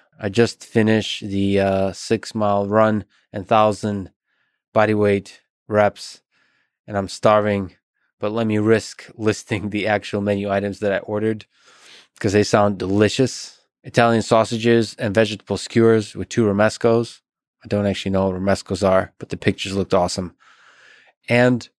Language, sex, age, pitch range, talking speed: English, male, 20-39, 100-115 Hz, 145 wpm